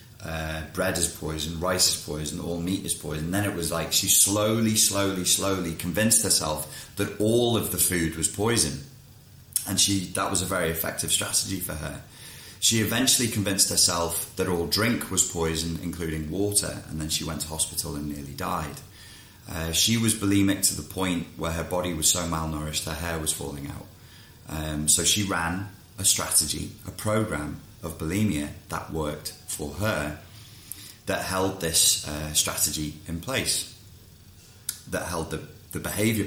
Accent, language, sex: British, English, male